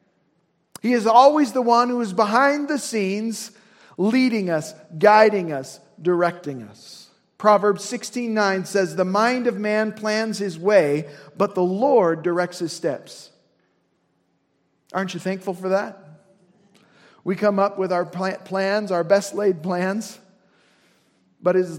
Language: English